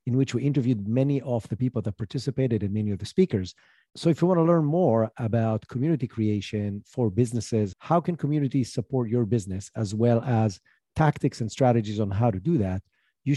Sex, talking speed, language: male, 200 wpm, English